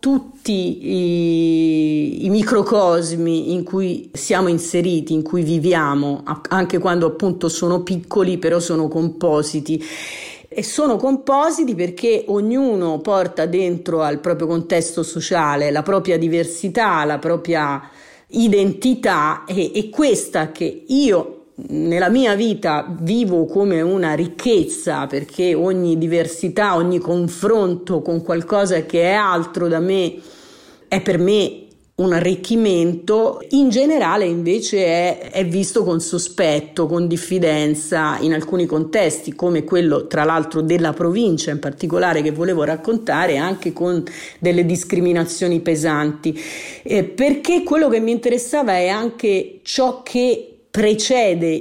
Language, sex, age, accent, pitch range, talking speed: Italian, female, 50-69, native, 165-205 Hz, 120 wpm